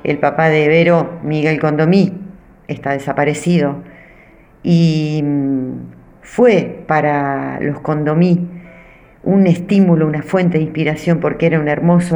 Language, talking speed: Spanish, 115 wpm